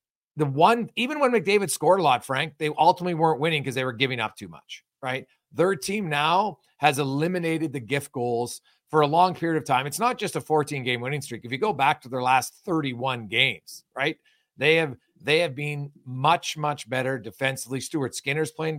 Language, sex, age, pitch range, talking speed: English, male, 40-59, 135-170 Hz, 205 wpm